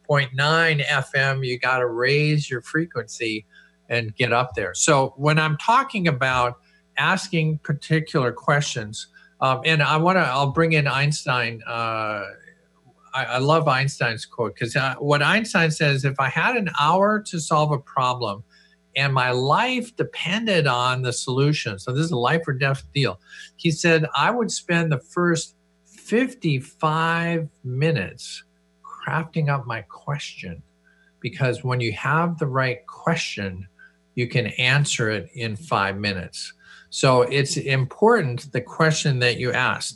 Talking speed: 150 wpm